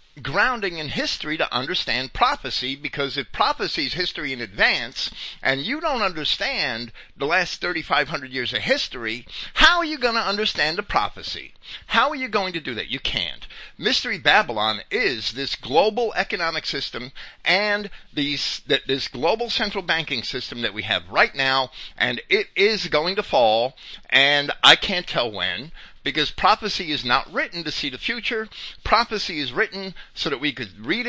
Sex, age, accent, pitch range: male, 50-69, American, 145-220 Hz